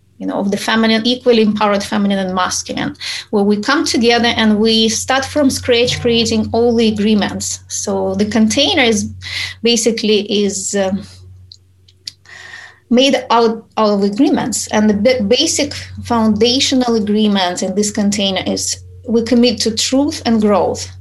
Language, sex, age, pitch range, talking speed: English, female, 20-39, 200-240 Hz, 140 wpm